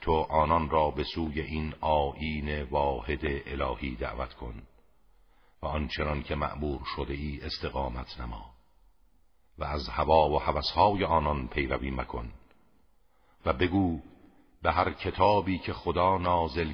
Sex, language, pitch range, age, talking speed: male, Persian, 70-85 Hz, 50-69, 120 wpm